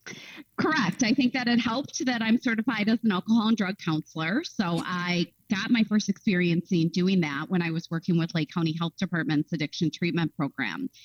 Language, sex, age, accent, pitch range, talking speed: English, female, 30-49, American, 150-190 Hz, 195 wpm